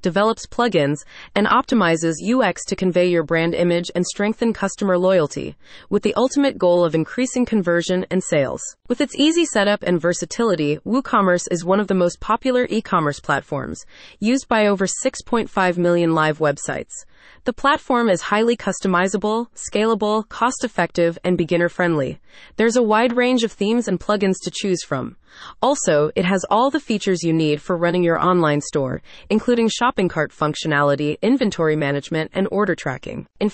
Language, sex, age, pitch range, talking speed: English, female, 30-49, 170-230 Hz, 155 wpm